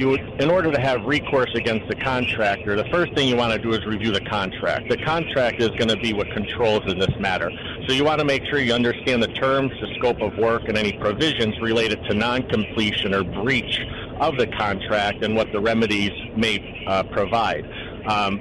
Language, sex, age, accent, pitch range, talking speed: English, male, 40-59, American, 105-125 Hz, 195 wpm